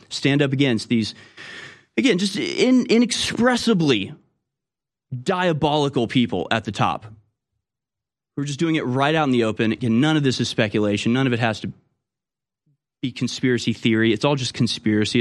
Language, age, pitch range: English, 30-49, 105-135 Hz